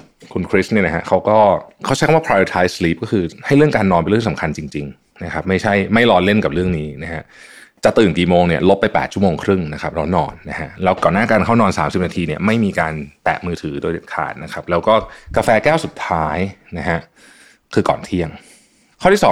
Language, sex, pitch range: Thai, male, 85-105 Hz